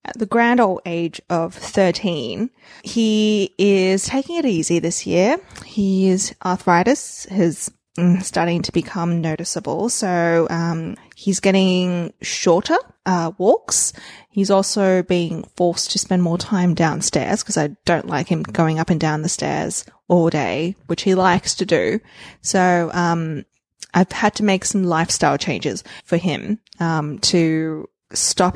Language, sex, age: English, female, 20-39